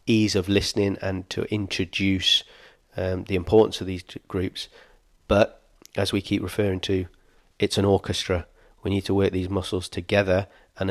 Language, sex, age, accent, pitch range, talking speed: English, male, 30-49, British, 95-100 Hz, 160 wpm